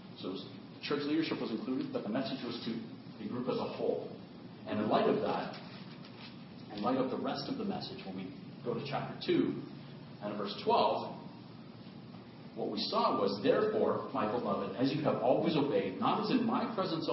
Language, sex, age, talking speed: English, male, 40-59, 190 wpm